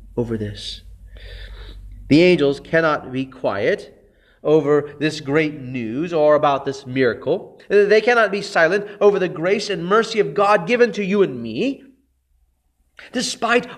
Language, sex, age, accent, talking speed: English, male, 30-49, American, 140 wpm